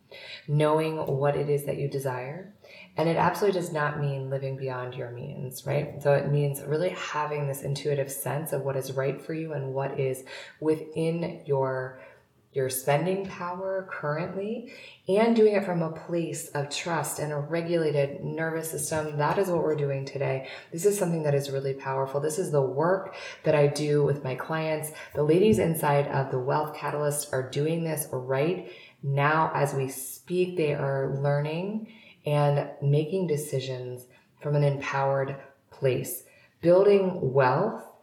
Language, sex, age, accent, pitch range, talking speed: English, female, 20-39, American, 140-170 Hz, 165 wpm